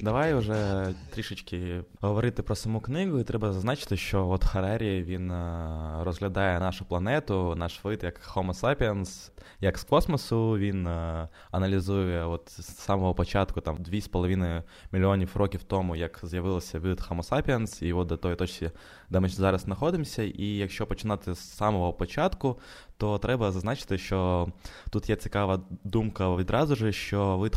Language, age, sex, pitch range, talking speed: Ukrainian, 20-39, male, 90-105 Hz, 150 wpm